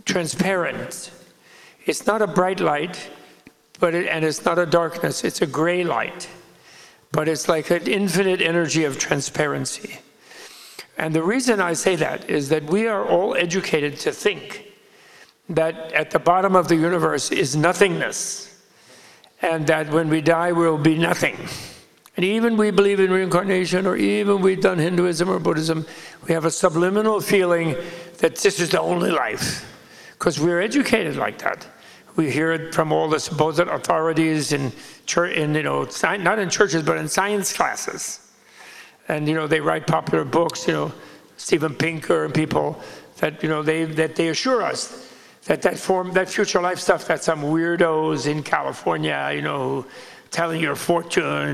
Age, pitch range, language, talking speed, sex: 60-79, 160-185 Hz, English, 165 wpm, male